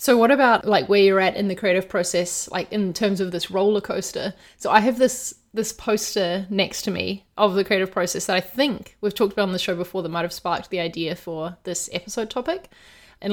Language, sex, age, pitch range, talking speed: English, female, 20-39, 175-210 Hz, 235 wpm